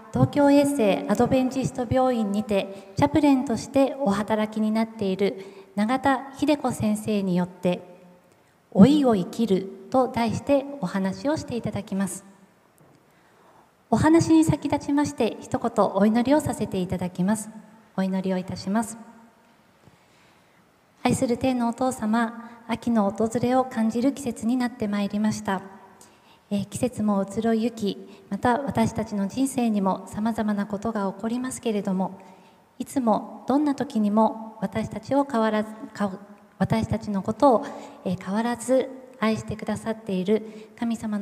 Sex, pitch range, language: female, 195-235 Hz, Japanese